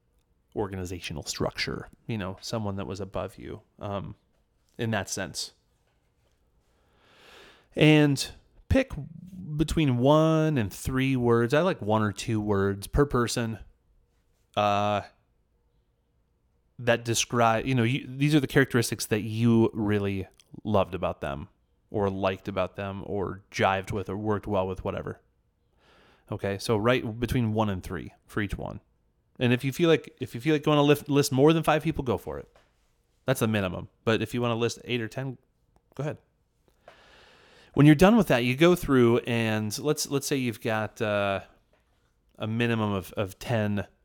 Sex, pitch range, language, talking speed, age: male, 100-130 Hz, English, 165 wpm, 30-49